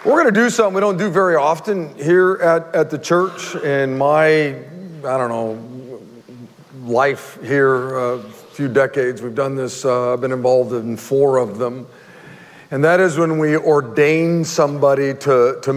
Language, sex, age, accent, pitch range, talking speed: English, male, 50-69, American, 135-165 Hz, 170 wpm